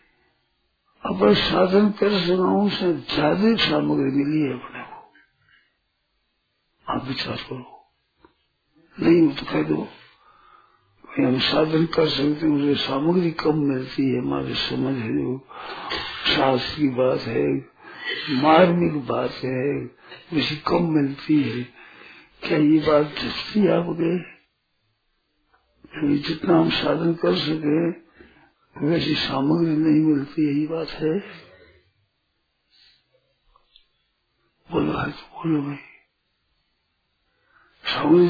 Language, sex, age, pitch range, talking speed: Hindi, male, 60-79, 140-180 Hz, 90 wpm